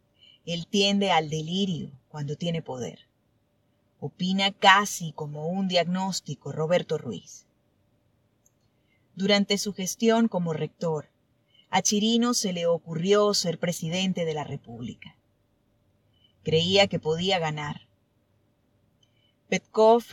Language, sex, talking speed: Spanish, female, 100 wpm